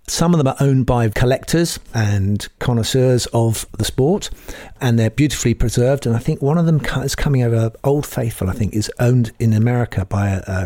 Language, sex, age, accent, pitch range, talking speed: English, male, 50-69, British, 110-135 Hz, 195 wpm